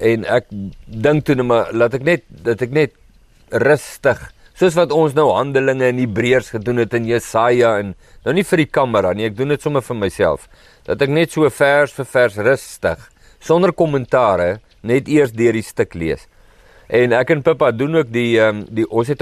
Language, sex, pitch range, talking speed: English, male, 115-150 Hz, 185 wpm